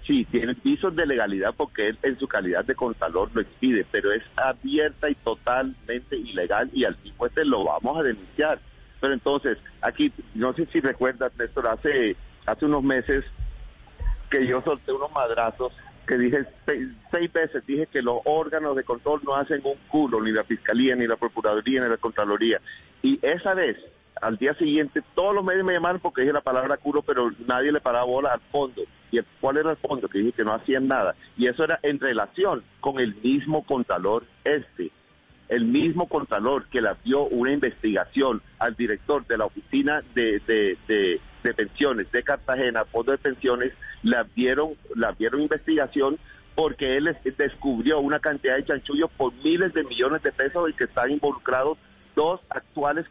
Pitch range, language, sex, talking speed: 125-160 Hz, Spanish, male, 180 wpm